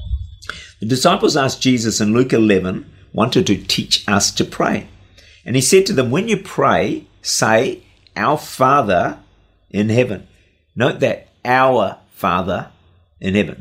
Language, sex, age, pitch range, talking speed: English, male, 50-69, 100-130 Hz, 140 wpm